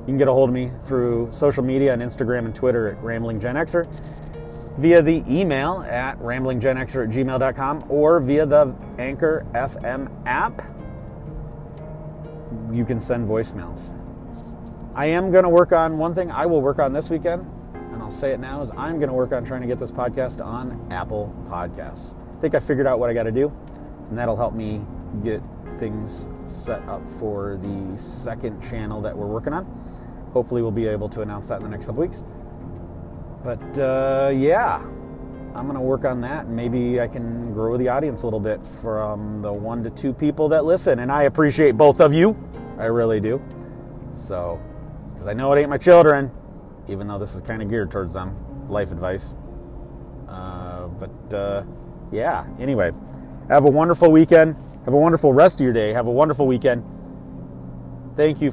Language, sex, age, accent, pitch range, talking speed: English, male, 30-49, American, 100-140 Hz, 185 wpm